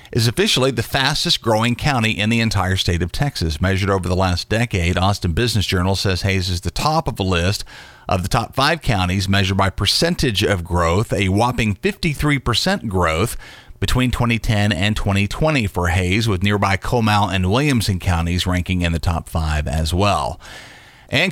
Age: 40-59